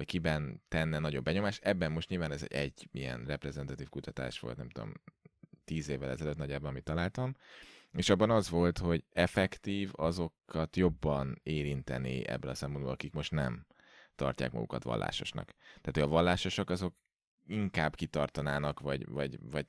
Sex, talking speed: male, 150 wpm